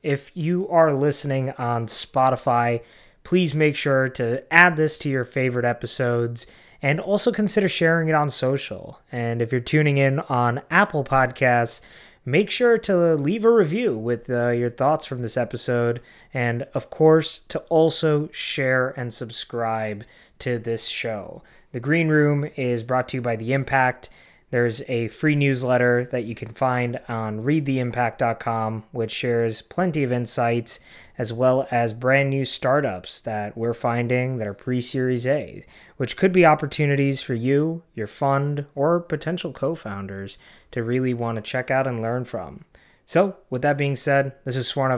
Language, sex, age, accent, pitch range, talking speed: English, male, 20-39, American, 120-145 Hz, 160 wpm